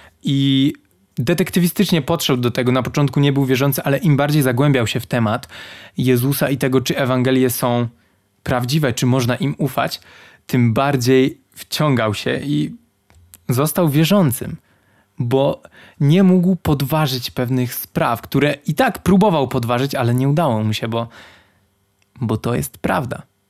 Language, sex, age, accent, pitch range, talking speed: Polish, male, 20-39, native, 110-145 Hz, 145 wpm